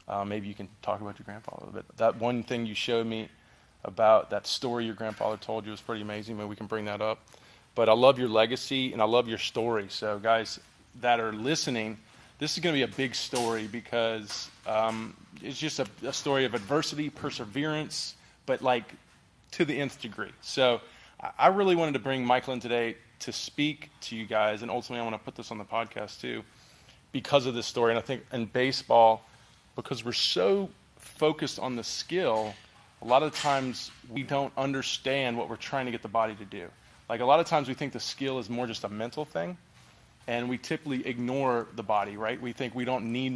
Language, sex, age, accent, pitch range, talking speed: English, male, 20-39, American, 110-135 Hz, 215 wpm